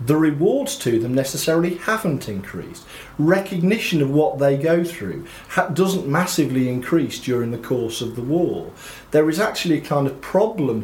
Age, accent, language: 40-59, British, English